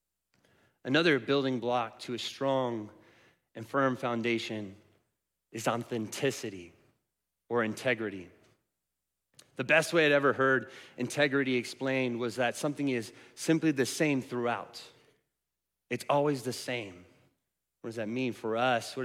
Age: 30-49